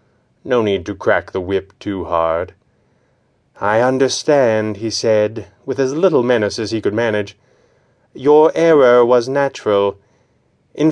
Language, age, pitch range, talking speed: English, 30-49, 105-135 Hz, 135 wpm